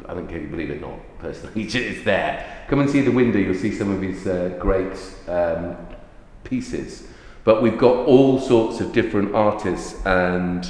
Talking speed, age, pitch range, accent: 195 wpm, 40-59, 85-100 Hz, British